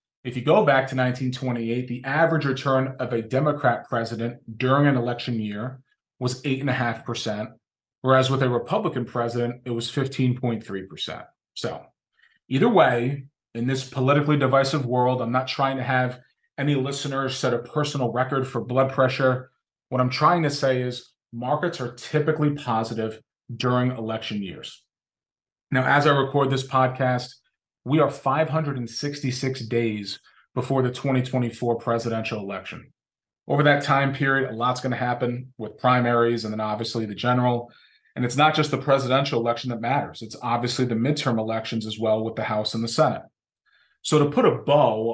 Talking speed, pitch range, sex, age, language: 160 wpm, 120-135 Hz, male, 30-49, English